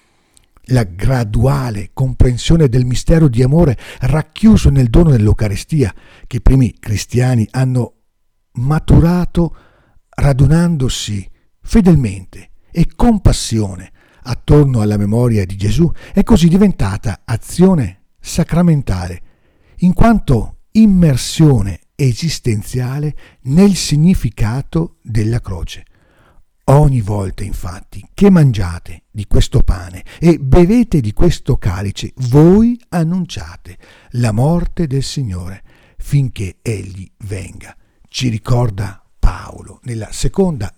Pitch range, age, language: 105-150 Hz, 50-69, Italian